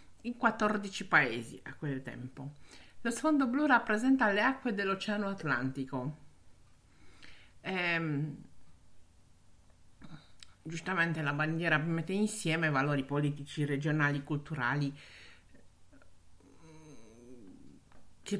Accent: native